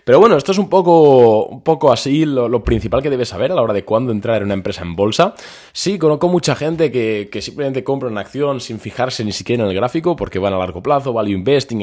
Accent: Spanish